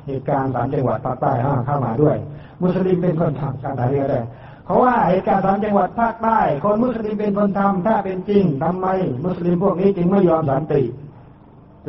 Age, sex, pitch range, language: 60-79, male, 135-180 Hz, Thai